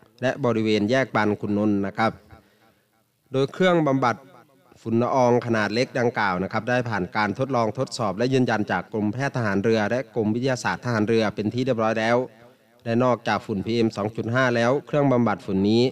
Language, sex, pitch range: Thai, male, 105-130 Hz